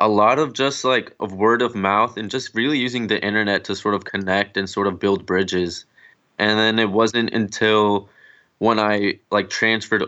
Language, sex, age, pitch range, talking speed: English, male, 20-39, 100-110 Hz, 195 wpm